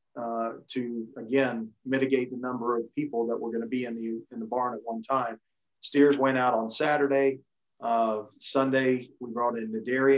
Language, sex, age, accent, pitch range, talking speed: English, male, 40-59, American, 120-135 Hz, 195 wpm